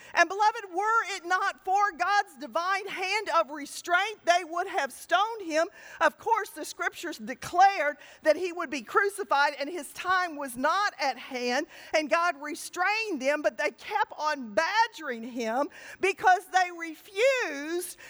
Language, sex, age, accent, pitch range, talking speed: English, female, 50-69, American, 250-335 Hz, 155 wpm